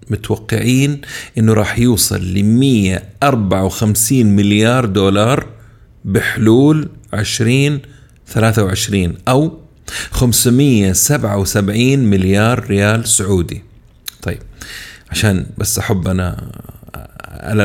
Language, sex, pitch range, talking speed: Arabic, male, 100-120 Hz, 85 wpm